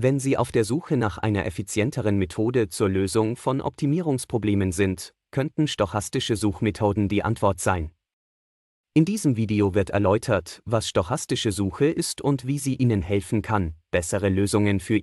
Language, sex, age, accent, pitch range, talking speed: German, male, 30-49, German, 100-130 Hz, 150 wpm